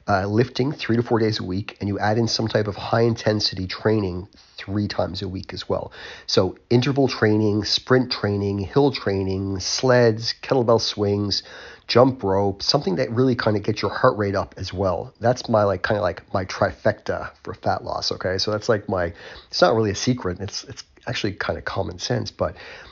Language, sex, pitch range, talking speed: English, male, 100-120 Hz, 200 wpm